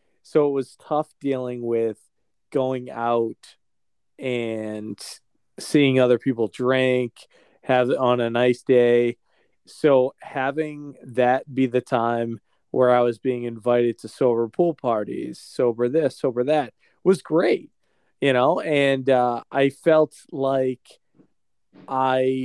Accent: American